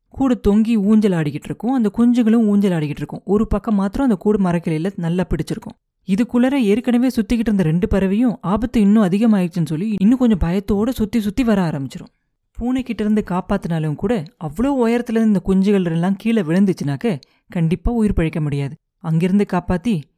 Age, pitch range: 30-49, 170-220 Hz